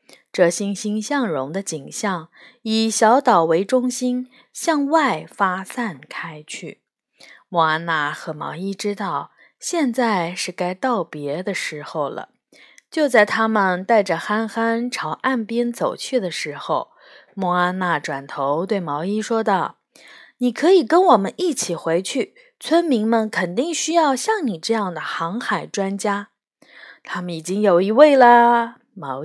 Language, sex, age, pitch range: Chinese, female, 20-39, 175-255 Hz